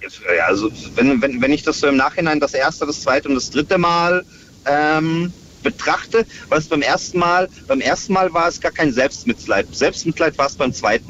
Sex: male